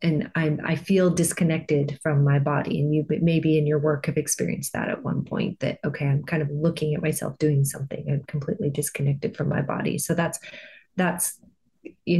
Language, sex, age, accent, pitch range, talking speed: English, female, 30-49, American, 150-180 Hz, 195 wpm